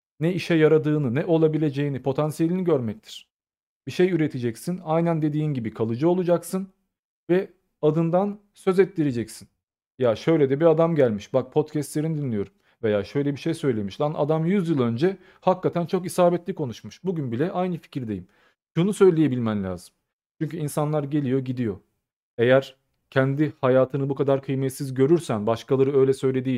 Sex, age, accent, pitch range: male, 40-59, native, 130-165 Hz